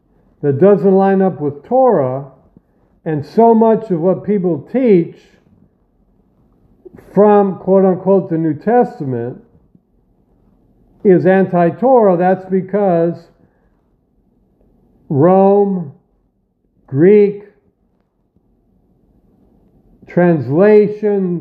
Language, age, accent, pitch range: English, 60-79, American, 160-200 Hz